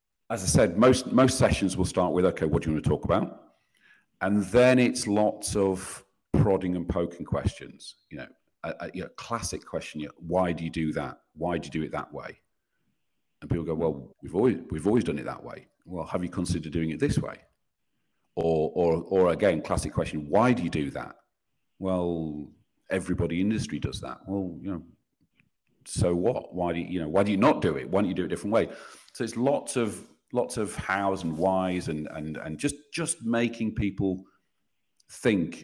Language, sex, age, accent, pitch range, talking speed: English, male, 40-59, British, 80-100 Hz, 210 wpm